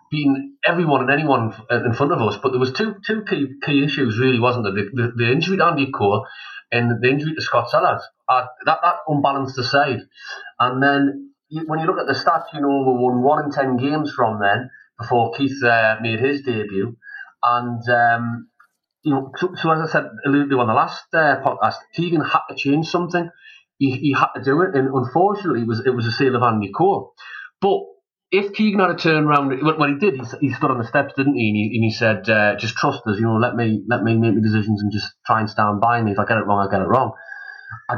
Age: 30-49